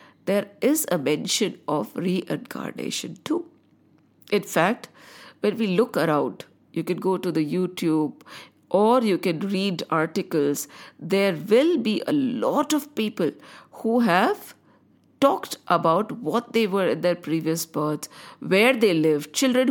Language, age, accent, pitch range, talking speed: English, 50-69, Indian, 170-255 Hz, 140 wpm